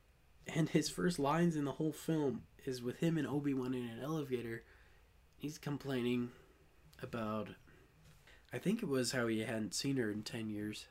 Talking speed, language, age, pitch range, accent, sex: 170 wpm, English, 20-39, 110-160 Hz, American, male